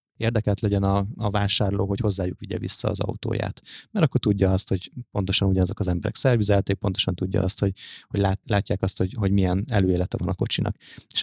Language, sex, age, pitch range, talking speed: Hungarian, male, 20-39, 95-110 Hz, 200 wpm